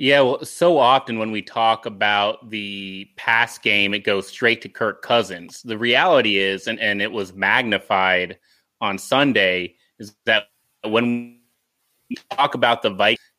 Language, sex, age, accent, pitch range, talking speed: English, male, 30-49, American, 110-130 Hz, 155 wpm